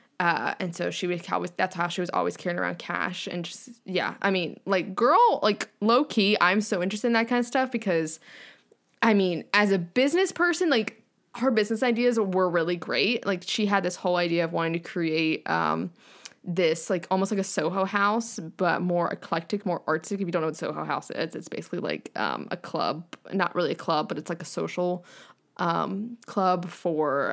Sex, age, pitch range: female, 20-39, 165-205 Hz